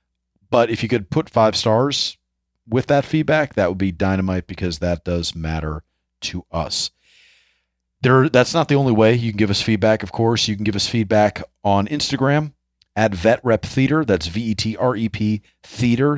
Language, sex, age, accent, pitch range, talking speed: English, male, 40-59, American, 95-125 Hz, 175 wpm